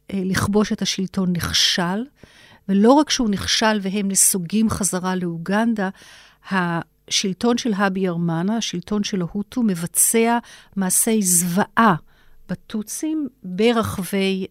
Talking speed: 100 wpm